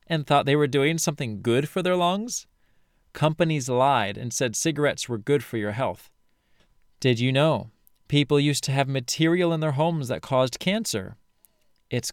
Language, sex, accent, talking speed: English, male, American, 175 wpm